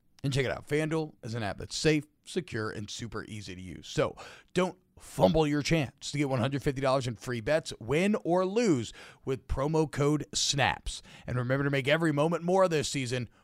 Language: English